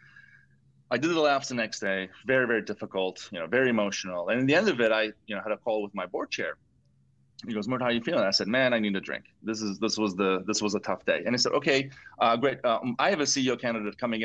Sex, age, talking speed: male, 30-49, 280 wpm